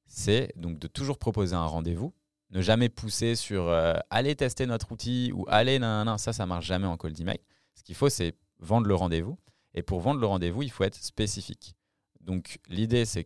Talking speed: 220 wpm